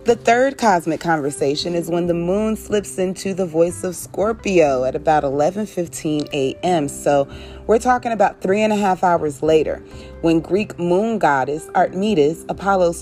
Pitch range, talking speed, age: 145-205 Hz, 155 wpm, 30-49